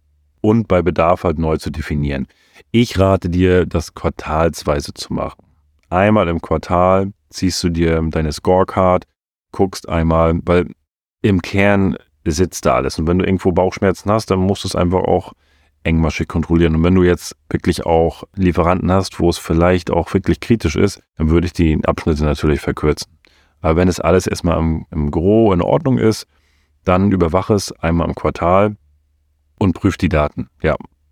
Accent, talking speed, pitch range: German, 170 wpm, 80-95 Hz